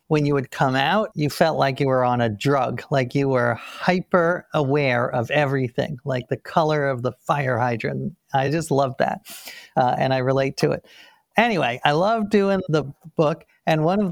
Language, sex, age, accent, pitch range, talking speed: English, male, 50-69, American, 140-190 Hz, 195 wpm